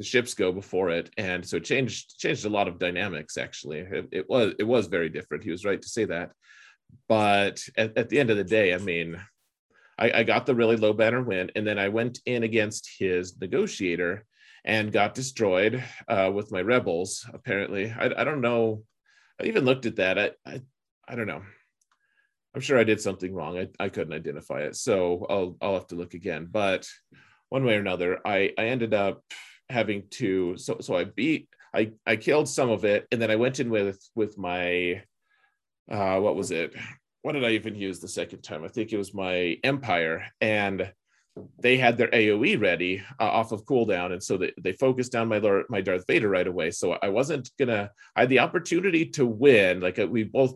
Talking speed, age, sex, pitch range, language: 210 wpm, 30-49, male, 95-115 Hz, English